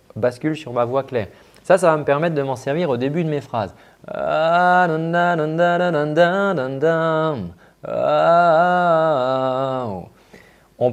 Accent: French